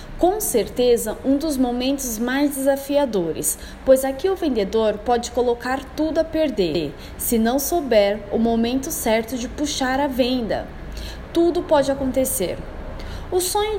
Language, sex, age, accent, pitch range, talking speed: Portuguese, female, 20-39, Brazilian, 225-285 Hz, 135 wpm